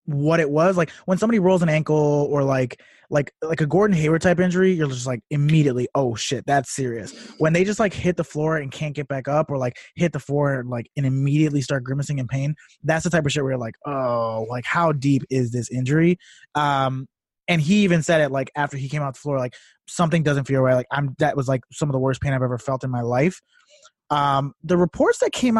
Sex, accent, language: male, American, English